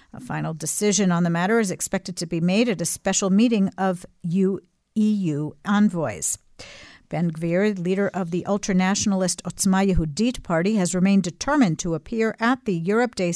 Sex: female